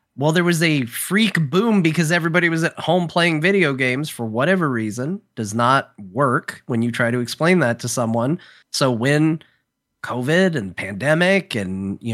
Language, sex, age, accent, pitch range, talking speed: English, male, 30-49, American, 130-170 Hz, 175 wpm